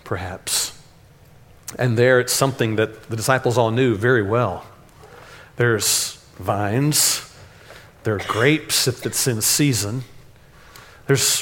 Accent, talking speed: American, 115 wpm